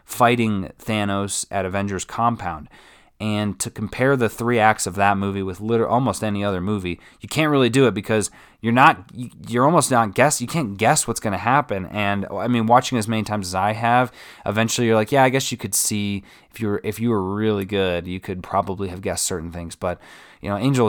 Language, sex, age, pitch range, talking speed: English, male, 20-39, 95-120 Hz, 220 wpm